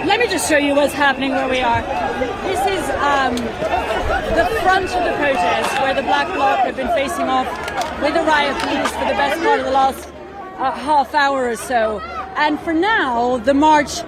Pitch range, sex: 255-305 Hz, female